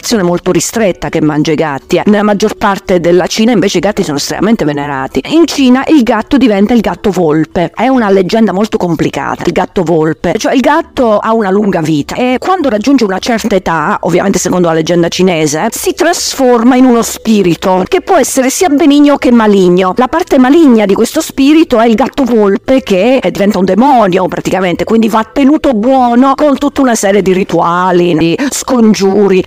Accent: native